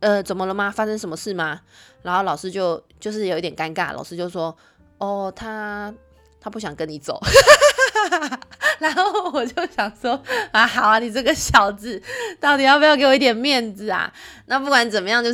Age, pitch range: 20-39, 185-235 Hz